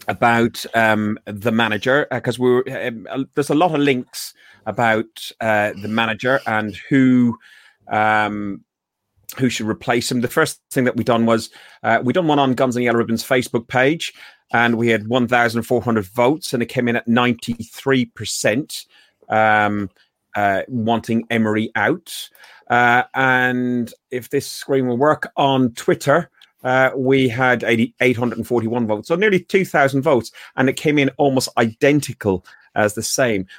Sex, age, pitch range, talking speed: male, 30-49, 115-140 Hz, 155 wpm